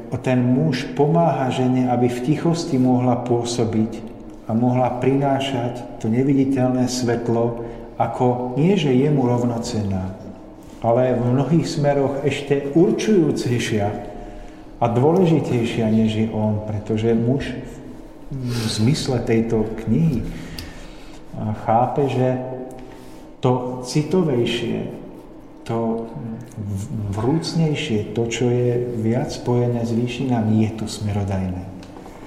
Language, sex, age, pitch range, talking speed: Slovak, male, 50-69, 110-130 Hz, 100 wpm